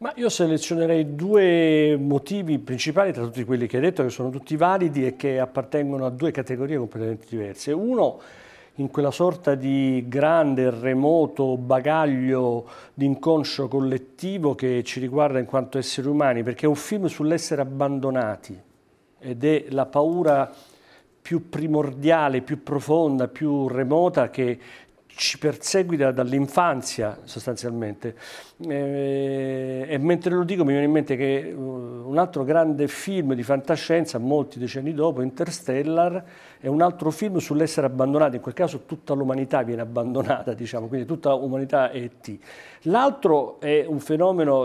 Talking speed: 140 wpm